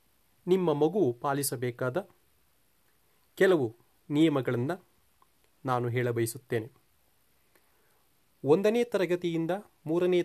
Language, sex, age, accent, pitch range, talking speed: Kannada, male, 40-59, native, 130-185 Hz, 60 wpm